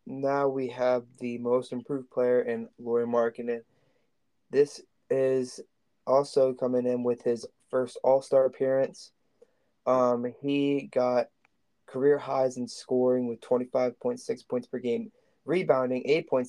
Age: 20-39